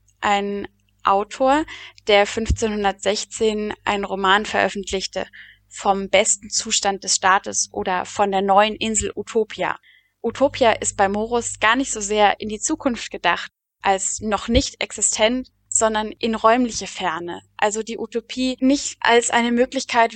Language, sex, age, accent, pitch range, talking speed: German, female, 10-29, German, 200-240 Hz, 135 wpm